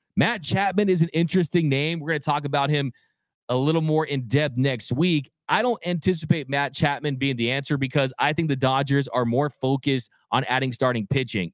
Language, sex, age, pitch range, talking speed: English, male, 30-49, 130-165 Hz, 205 wpm